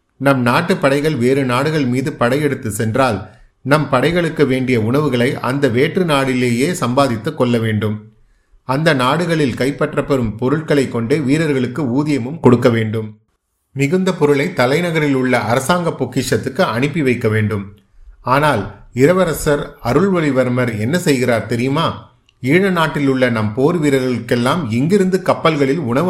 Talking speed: 115 wpm